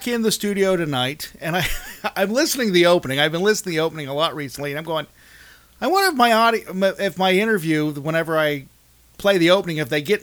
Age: 40-59